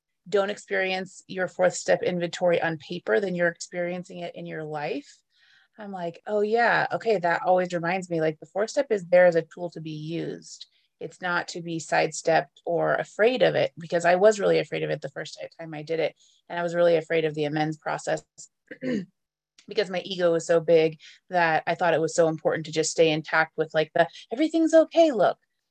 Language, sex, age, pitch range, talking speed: English, female, 30-49, 160-180 Hz, 210 wpm